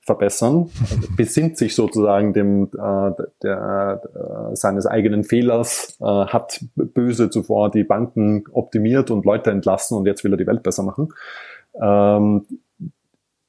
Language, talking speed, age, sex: German, 140 wpm, 30-49, male